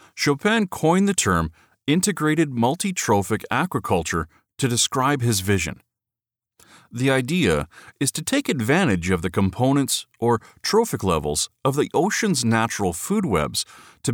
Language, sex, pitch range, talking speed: English, male, 100-160 Hz, 125 wpm